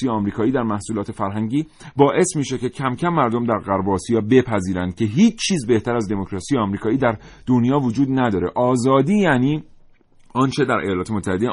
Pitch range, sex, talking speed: 100-145 Hz, male, 160 wpm